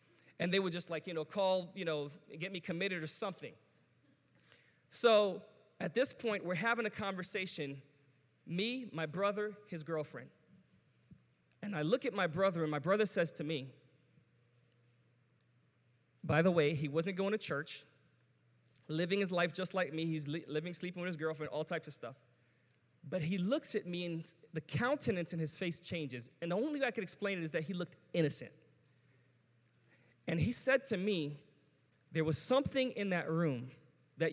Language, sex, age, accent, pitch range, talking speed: English, male, 20-39, American, 145-200 Hz, 175 wpm